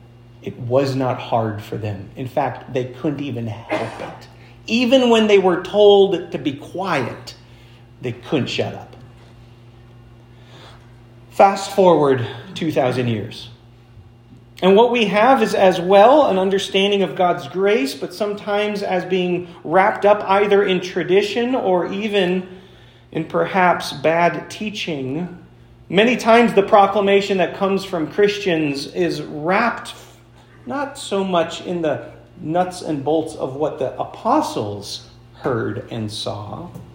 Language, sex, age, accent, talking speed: English, male, 40-59, American, 130 wpm